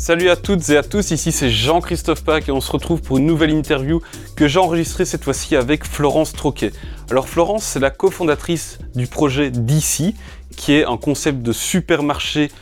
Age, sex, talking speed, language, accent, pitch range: 20-39, male, 190 wpm, French, French, 130-165 Hz